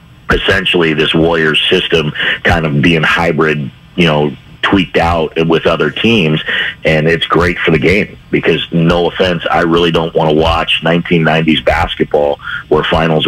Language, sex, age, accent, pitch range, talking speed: English, male, 30-49, American, 75-85 Hz, 155 wpm